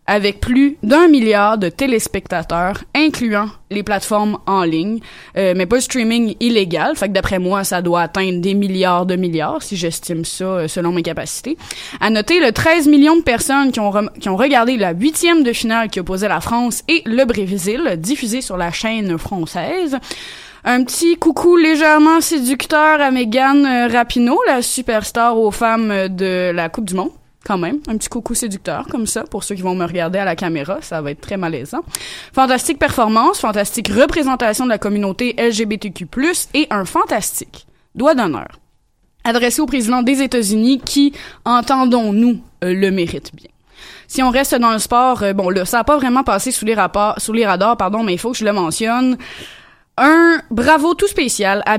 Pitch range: 195-260 Hz